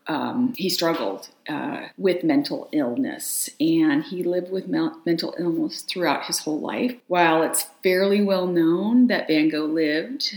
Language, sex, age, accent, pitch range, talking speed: English, female, 40-59, American, 165-275 Hz, 150 wpm